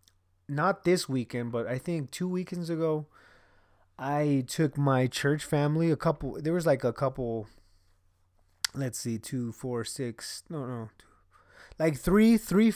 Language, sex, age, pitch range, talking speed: English, male, 20-39, 120-160 Hz, 150 wpm